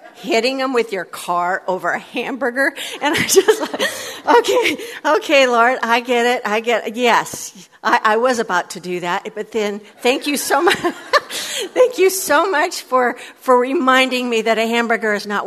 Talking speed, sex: 185 wpm, female